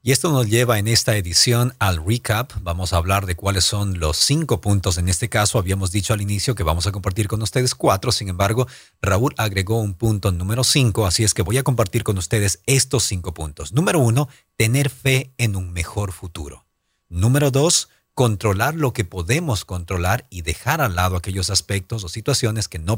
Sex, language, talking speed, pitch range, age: male, English, 200 wpm, 95-120 Hz, 40-59